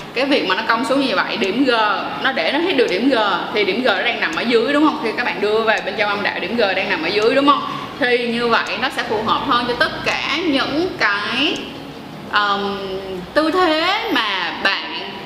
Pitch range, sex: 210-280 Hz, female